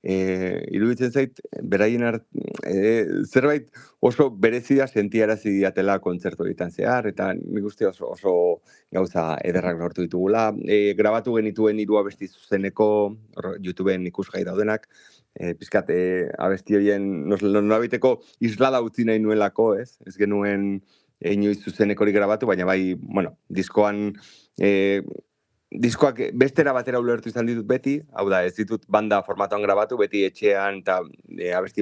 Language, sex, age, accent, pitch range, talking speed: English, male, 30-49, Spanish, 95-110 Hz, 140 wpm